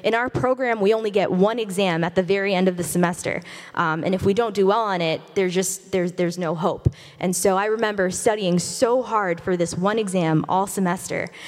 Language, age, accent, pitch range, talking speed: English, 20-39, American, 175-210 Hz, 220 wpm